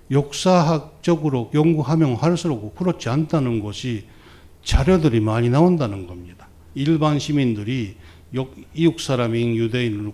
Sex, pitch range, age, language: male, 105-150 Hz, 60-79, Korean